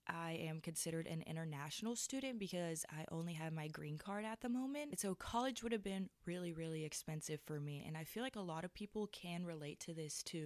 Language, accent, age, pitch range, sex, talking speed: English, American, 20-39, 155-185 Hz, female, 225 wpm